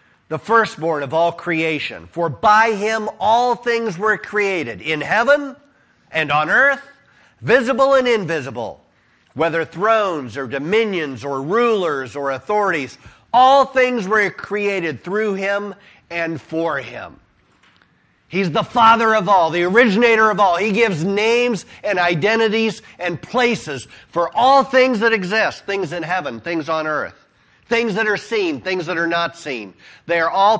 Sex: male